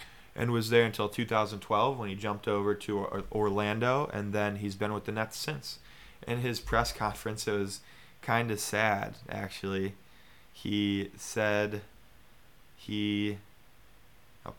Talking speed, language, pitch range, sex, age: 135 wpm, English, 100-115 Hz, male, 20-39